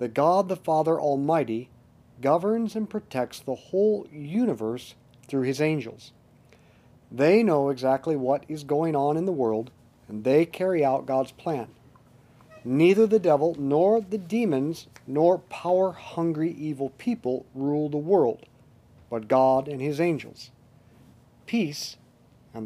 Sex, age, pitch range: male, 50-69, 130-180 Hz